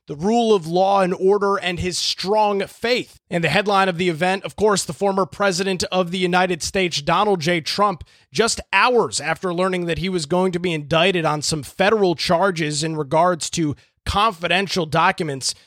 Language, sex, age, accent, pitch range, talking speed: English, male, 30-49, American, 160-190 Hz, 185 wpm